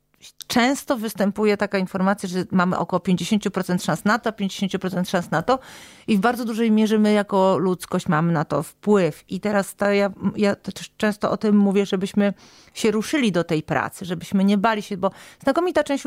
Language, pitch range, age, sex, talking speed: Polish, 180-210 Hz, 40-59, female, 185 wpm